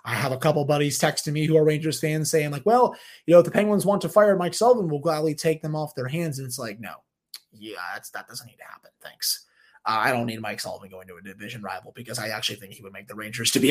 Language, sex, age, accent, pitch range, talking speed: English, male, 20-39, American, 150-200 Hz, 290 wpm